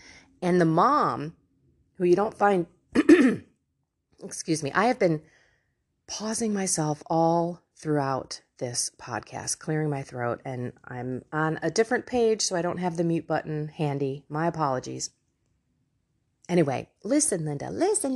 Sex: female